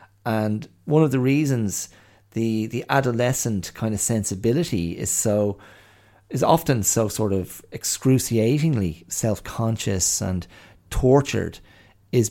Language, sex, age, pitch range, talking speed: English, male, 40-59, 95-110 Hz, 110 wpm